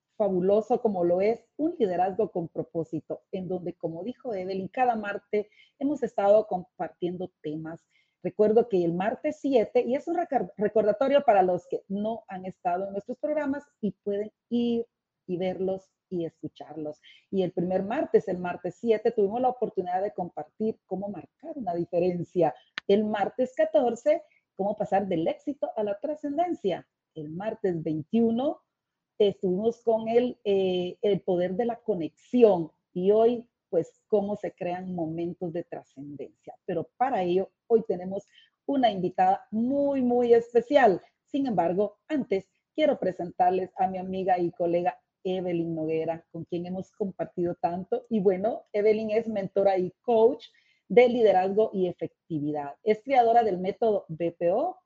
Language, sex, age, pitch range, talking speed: Spanish, female, 40-59, 180-235 Hz, 145 wpm